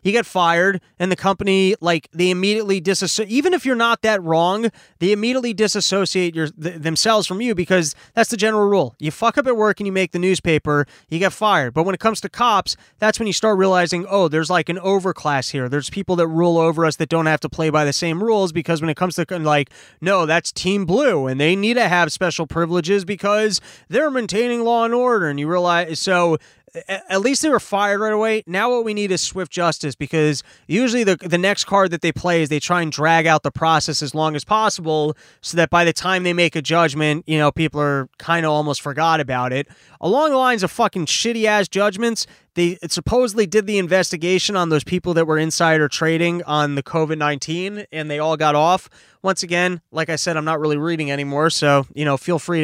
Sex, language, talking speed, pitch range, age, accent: male, English, 225 wpm, 155-200 Hz, 20-39, American